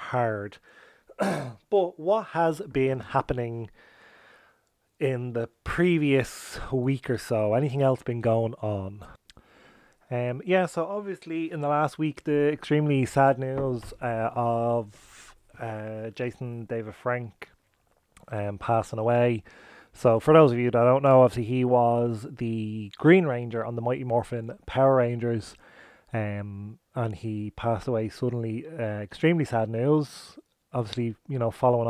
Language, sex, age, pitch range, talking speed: English, male, 30-49, 115-135 Hz, 135 wpm